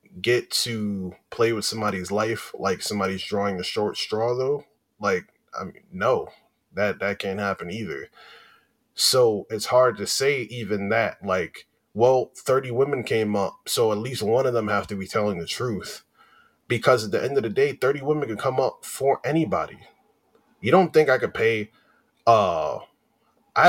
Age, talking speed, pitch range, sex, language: 20-39, 175 wpm, 100-130 Hz, male, English